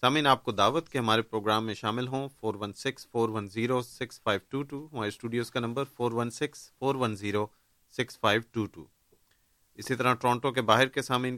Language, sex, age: Urdu, male, 40-59